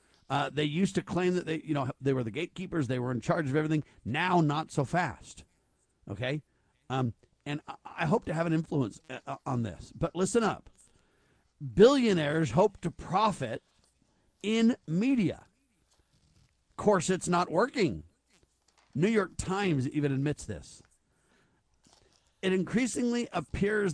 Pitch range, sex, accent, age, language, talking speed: 145-190 Hz, male, American, 50-69, English, 145 wpm